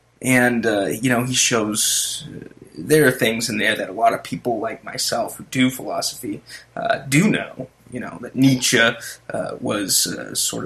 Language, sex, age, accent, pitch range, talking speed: English, male, 20-39, American, 120-150 Hz, 185 wpm